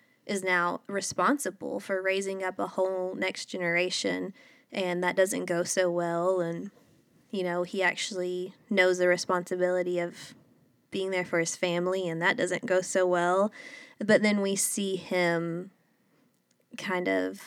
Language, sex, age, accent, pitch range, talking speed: English, female, 20-39, American, 175-220 Hz, 150 wpm